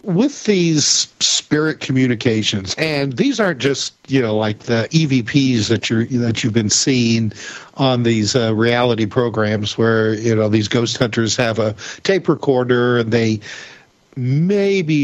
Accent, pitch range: American, 115-140 Hz